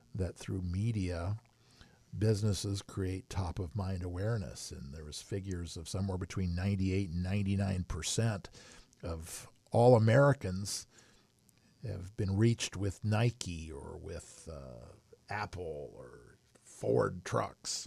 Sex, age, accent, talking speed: male, 50-69, American, 105 wpm